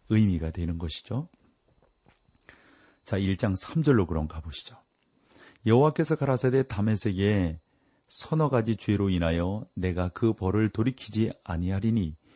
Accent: native